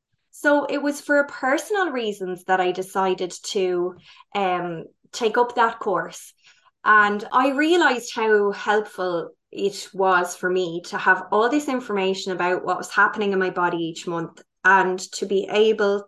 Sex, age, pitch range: female, 20-39, 185-240 Hz